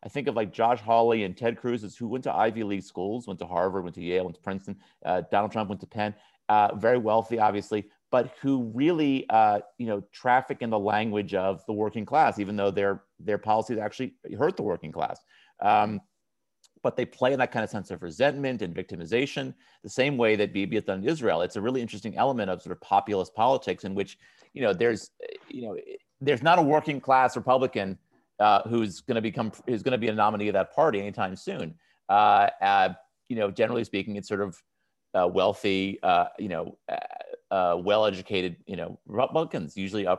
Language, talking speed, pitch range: English, 210 wpm, 100-135 Hz